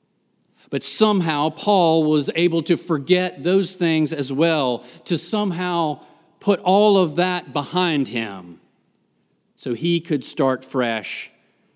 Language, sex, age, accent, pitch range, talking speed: English, male, 50-69, American, 120-170 Hz, 120 wpm